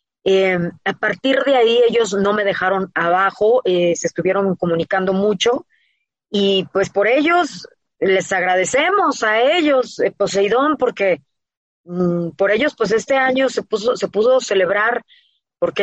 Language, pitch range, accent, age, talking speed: Spanish, 185-235 Hz, Mexican, 30-49, 145 wpm